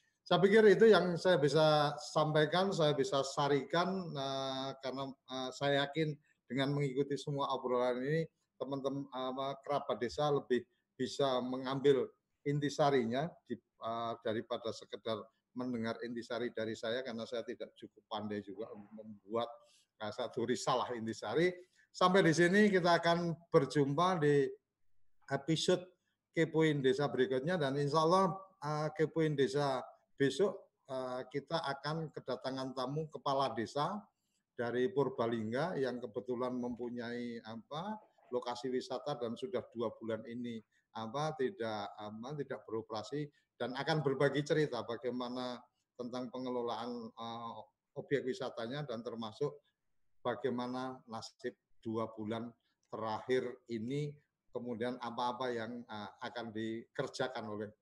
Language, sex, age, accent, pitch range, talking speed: Indonesian, male, 50-69, native, 120-150 Hz, 110 wpm